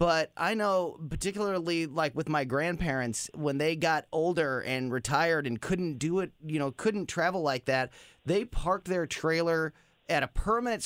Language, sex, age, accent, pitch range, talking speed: English, male, 30-49, American, 150-185 Hz, 170 wpm